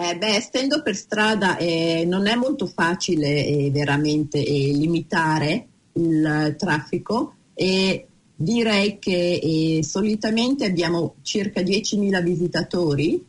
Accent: native